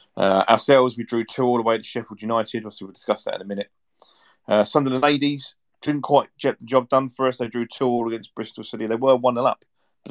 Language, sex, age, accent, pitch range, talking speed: English, male, 40-59, British, 100-120 Hz, 255 wpm